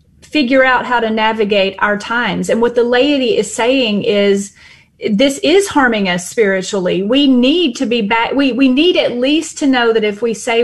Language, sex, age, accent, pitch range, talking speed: English, female, 30-49, American, 215-270 Hz, 195 wpm